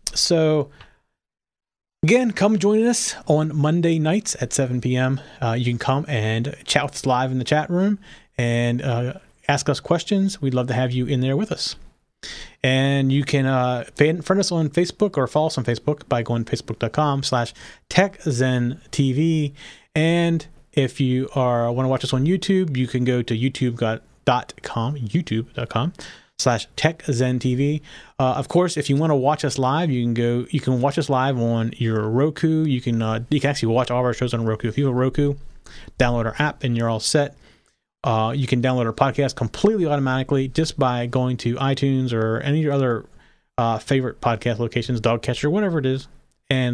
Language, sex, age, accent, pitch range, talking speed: English, male, 30-49, American, 120-150 Hz, 190 wpm